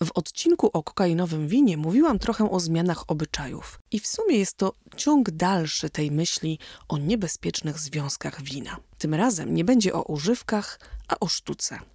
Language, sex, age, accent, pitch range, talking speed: Polish, female, 30-49, native, 155-215 Hz, 160 wpm